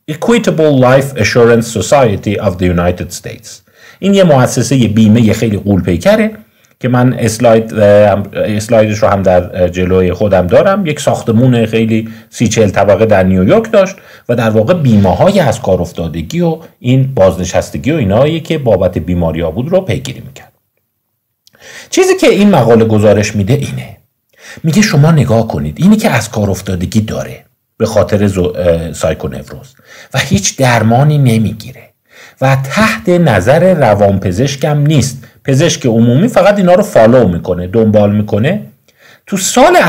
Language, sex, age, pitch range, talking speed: Persian, male, 50-69, 100-160 Hz, 145 wpm